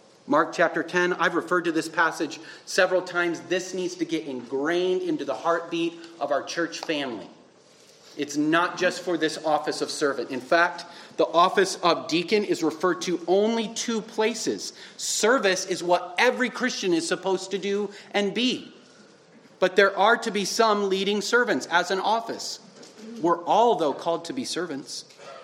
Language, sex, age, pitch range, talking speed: English, male, 40-59, 170-215 Hz, 165 wpm